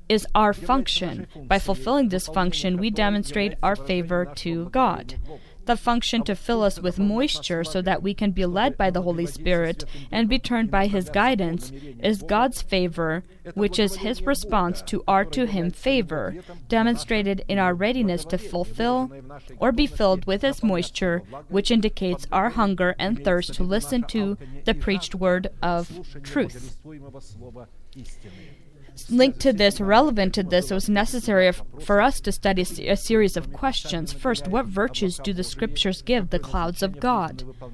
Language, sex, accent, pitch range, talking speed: English, female, American, 175-215 Hz, 160 wpm